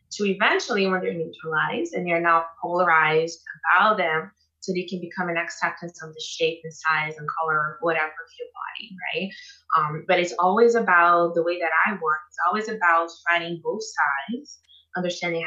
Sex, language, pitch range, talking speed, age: female, English, 160-190 Hz, 180 wpm, 20-39